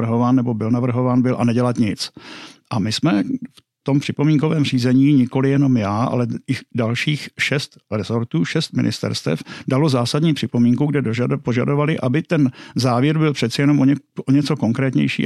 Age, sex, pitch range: 50-69, male, 120-140 Hz